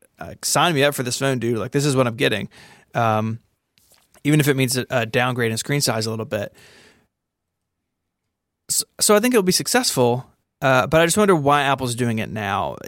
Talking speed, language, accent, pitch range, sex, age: 210 wpm, English, American, 120-140 Hz, male, 20-39